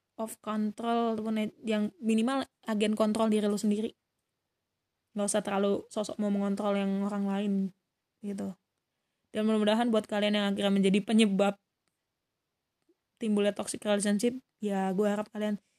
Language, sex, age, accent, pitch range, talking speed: Indonesian, female, 20-39, native, 200-220 Hz, 130 wpm